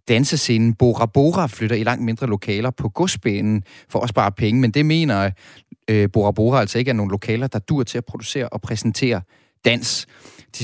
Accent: native